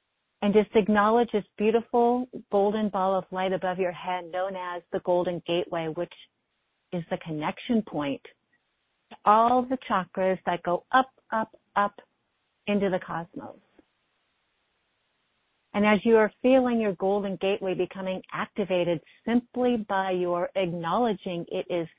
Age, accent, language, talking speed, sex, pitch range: 40-59, American, English, 135 wpm, female, 185-225 Hz